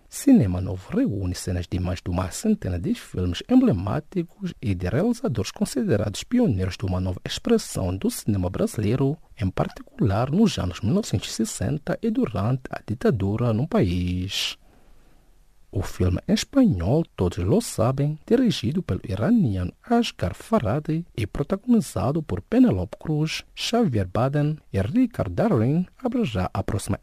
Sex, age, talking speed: male, 50-69, 135 wpm